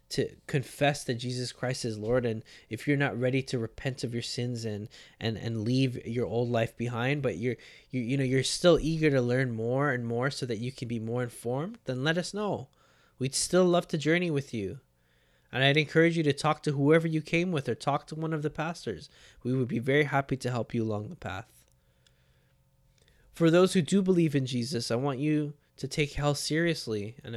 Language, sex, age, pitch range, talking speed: English, male, 20-39, 120-150 Hz, 220 wpm